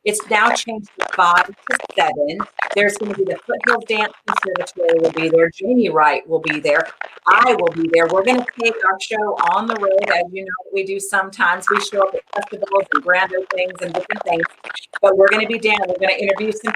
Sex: female